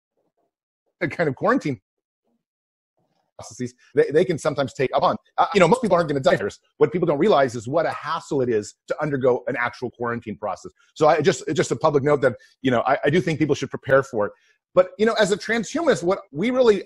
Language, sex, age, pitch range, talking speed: English, male, 40-59, 135-185 Hz, 235 wpm